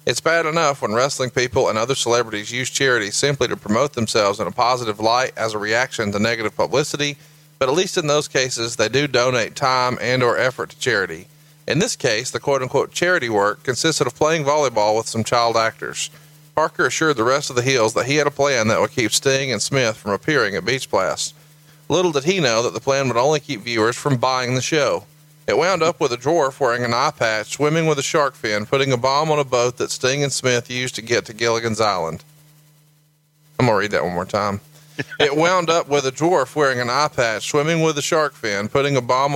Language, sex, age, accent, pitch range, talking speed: English, male, 40-59, American, 120-150 Hz, 230 wpm